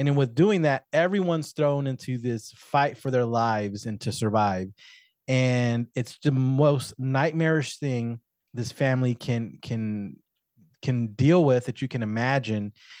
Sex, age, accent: male, 30-49, American